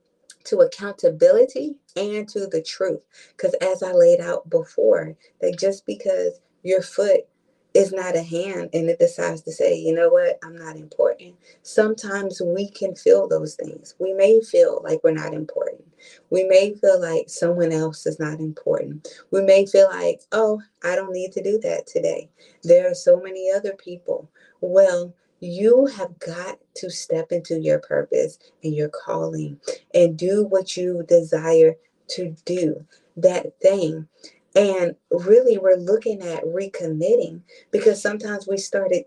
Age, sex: 30-49, female